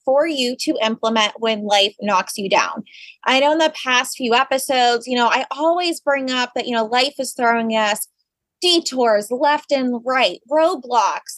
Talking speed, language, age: 180 wpm, English, 20-39